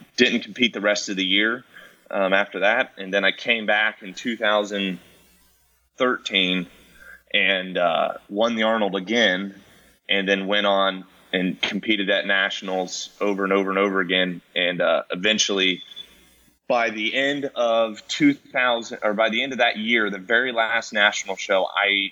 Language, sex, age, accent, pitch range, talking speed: English, male, 20-39, American, 95-110 Hz, 155 wpm